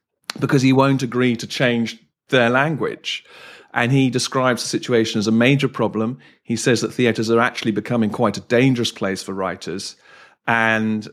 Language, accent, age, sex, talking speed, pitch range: English, British, 40-59, male, 165 wpm, 110-125 Hz